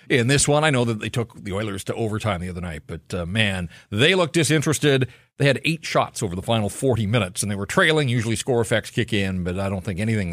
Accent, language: American, English